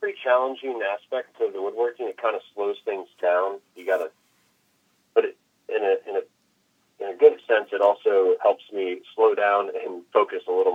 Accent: American